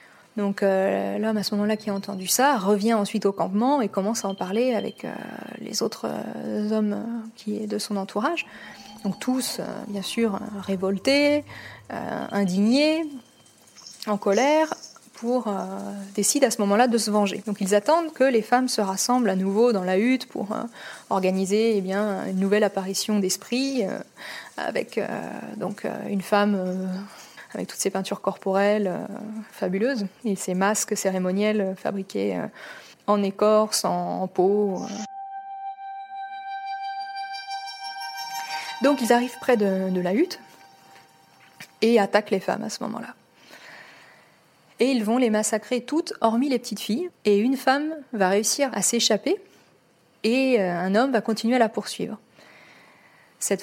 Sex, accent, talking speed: female, French, 155 wpm